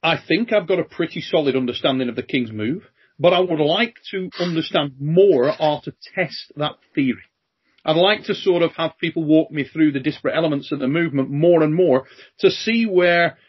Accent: British